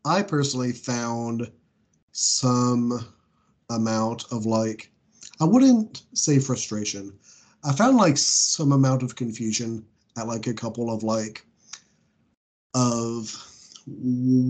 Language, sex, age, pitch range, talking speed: English, male, 30-49, 115-135 Hz, 105 wpm